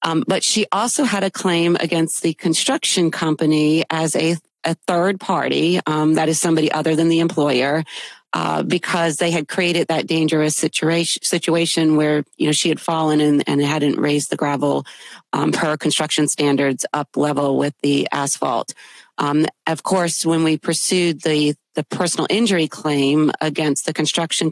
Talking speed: 165 wpm